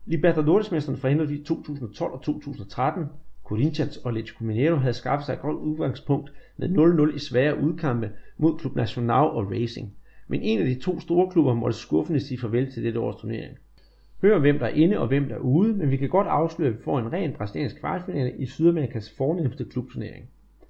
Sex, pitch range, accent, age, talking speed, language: male, 120-155 Hz, native, 30-49, 195 wpm, Danish